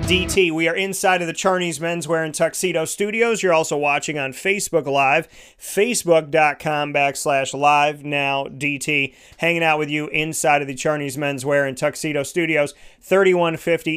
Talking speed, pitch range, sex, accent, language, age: 140 wpm, 145-165 Hz, male, American, English, 30-49